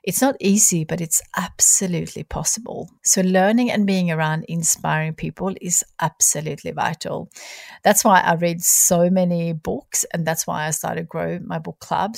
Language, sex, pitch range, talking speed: English, female, 160-195 Hz, 165 wpm